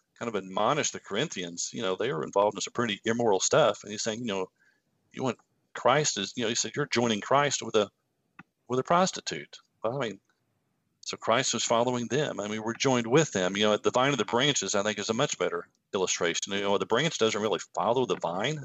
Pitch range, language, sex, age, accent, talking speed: 100-120 Hz, English, male, 40-59, American, 240 wpm